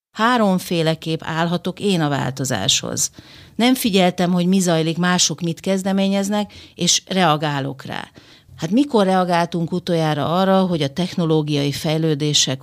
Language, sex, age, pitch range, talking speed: Hungarian, female, 40-59, 150-195 Hz, 120 wpm